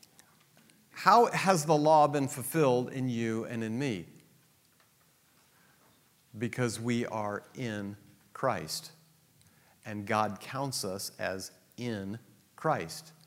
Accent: American